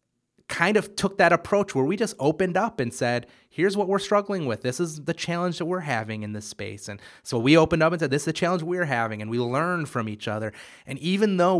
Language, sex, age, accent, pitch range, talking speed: English, male, 30-49, American, 110-140 Hz, 255 wpm